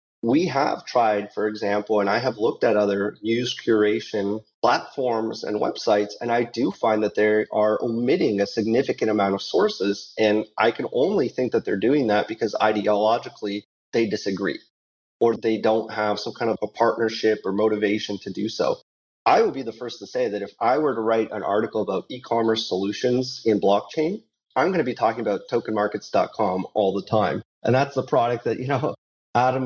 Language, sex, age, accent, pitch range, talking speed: English, male, 30-49, American, 100-115 Hz, 190 wpm